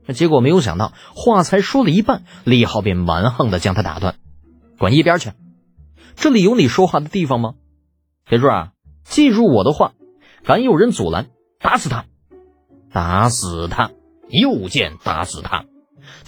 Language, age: Chinese, 30-49